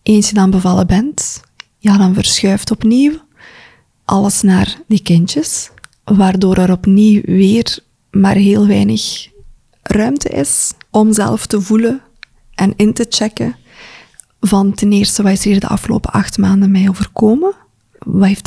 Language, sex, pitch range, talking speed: Dutch, female, 190-220 Hz, 145 wpm